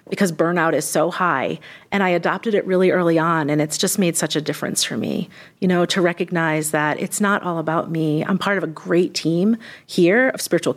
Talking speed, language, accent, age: 225 wpm, English, American, 40-59